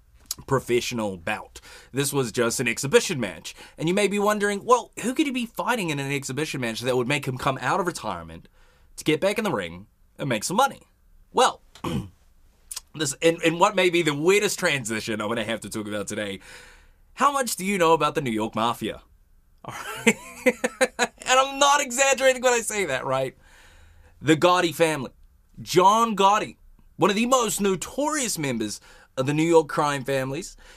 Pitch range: 125-205 Hz